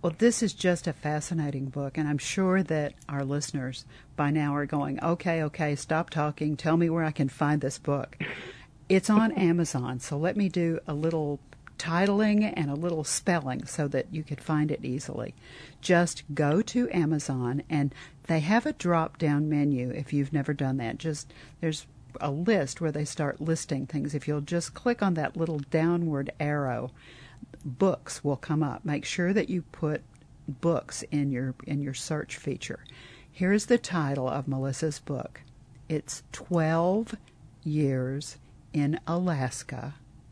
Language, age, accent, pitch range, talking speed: English, 50-69, American, 135-165 Hz, 165 wpm